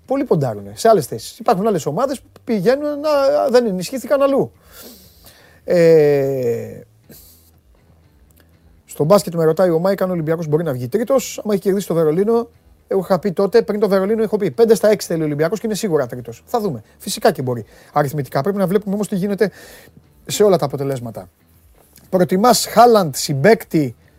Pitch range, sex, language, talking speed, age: 130-200 Hz, male, Greek, 170 wpm, 30-49